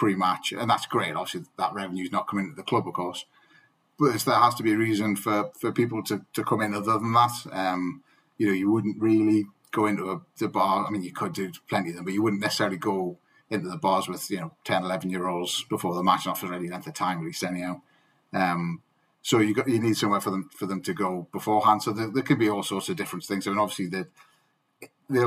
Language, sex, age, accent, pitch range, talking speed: English, male, 30-49, British, 95-105 Hz, 260 wpm